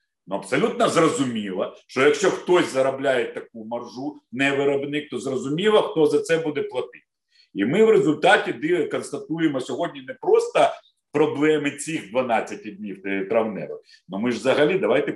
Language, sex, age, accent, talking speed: Ukrainian, male, 50-69, native, 145 wpm